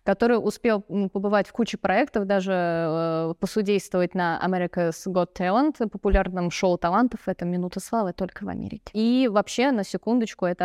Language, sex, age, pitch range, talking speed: Russian, female, 20-39, 190-225 Hz, 150 wpm